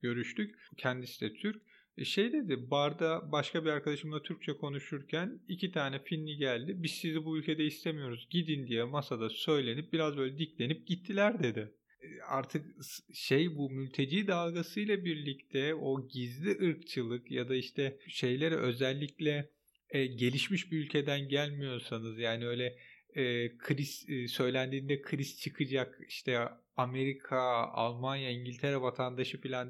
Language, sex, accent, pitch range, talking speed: Turkish, male, native, 130-160 Hz, 125 wpm